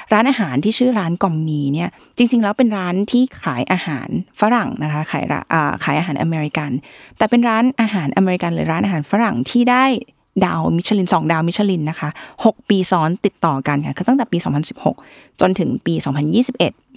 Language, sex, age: Thai, female, 20-39